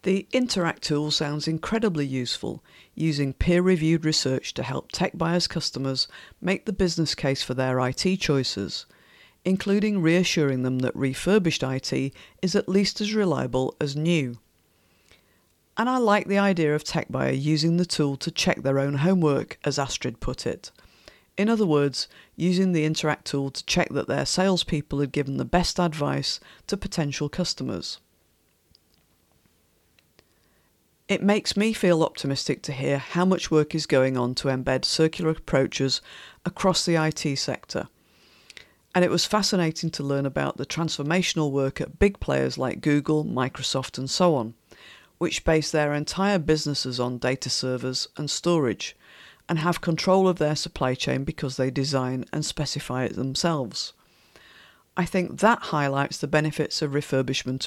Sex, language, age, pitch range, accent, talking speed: female, English, 50-69, 130-175 Hz, British, 150 wpm